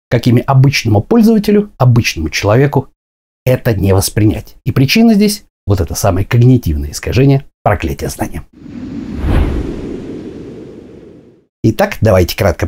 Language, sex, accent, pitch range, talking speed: Russian, male, native, 110-170 Hz, 100 wpm